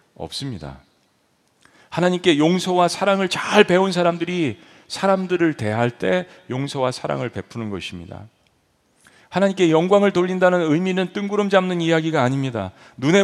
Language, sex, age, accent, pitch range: Korean, male, 40-59, native, 120-190 Hz